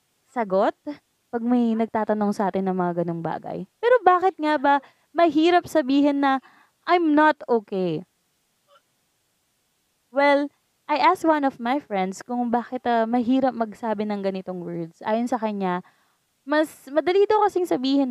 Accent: native